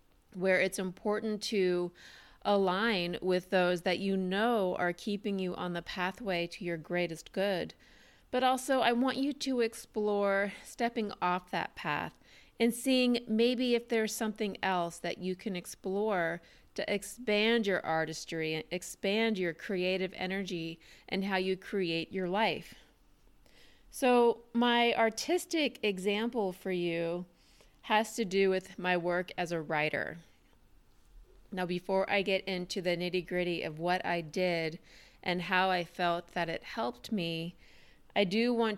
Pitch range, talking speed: 175-215 Hz, 145 wpm